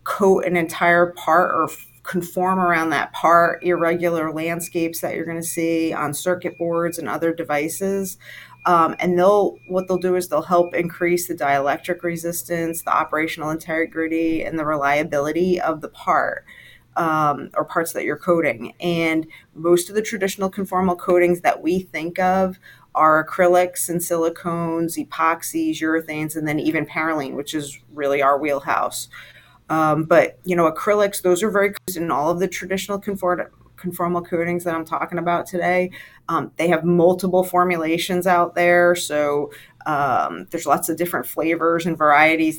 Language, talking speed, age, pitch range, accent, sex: English, 160 wpm, 40-59, 160-180 Hz, American, female